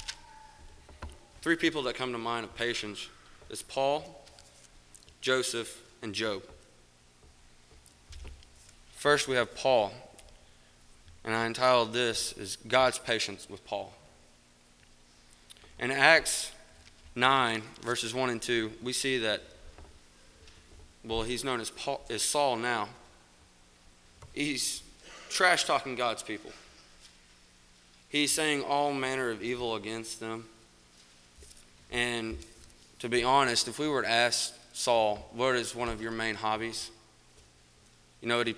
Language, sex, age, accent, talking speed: English, male, 20-39, American, 120 wpm